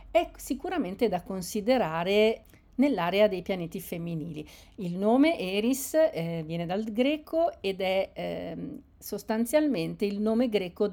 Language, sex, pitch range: Italian, female, 185-230 Hz